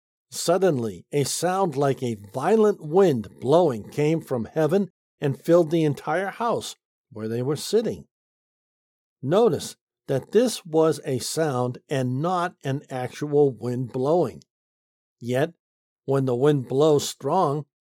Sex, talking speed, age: male, 130 wpm, 50-69